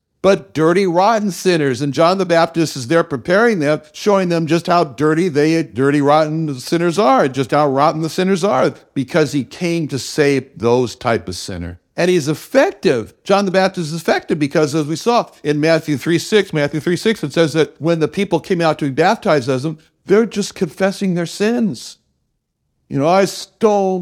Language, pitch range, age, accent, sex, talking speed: English, 140-195 Hz, 60-79, American, male, 195 wpm